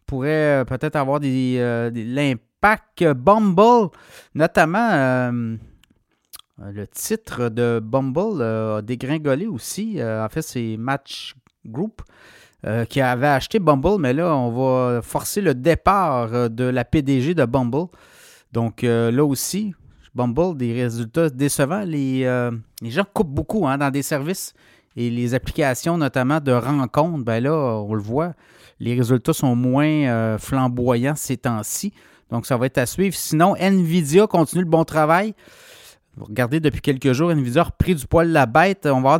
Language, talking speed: French, 160 wpm